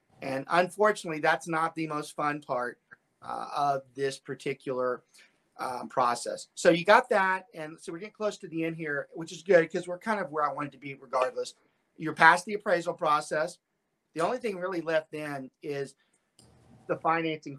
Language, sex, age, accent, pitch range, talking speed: English, male, 40-59, American, 140-170 Hz, 185 wpm